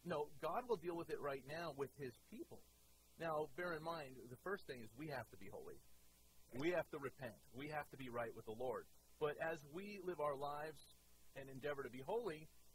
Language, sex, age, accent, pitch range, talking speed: English, male, 40-59, American, 135-195 Hz, 220 wpm